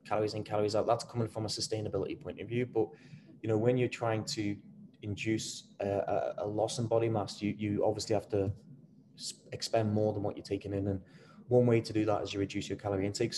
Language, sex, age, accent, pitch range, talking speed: English, male, 20-39, British, 100-115 Hz, 225 wpm